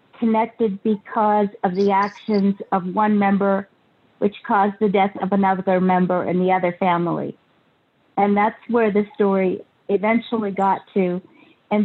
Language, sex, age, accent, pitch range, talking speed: English, female, 50-69, American, 200-230 Hz, 140 wpm